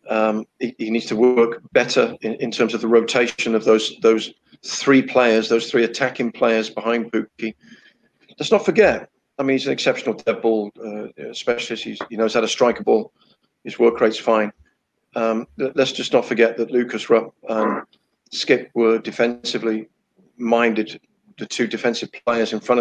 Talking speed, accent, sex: 180 wpm, British, male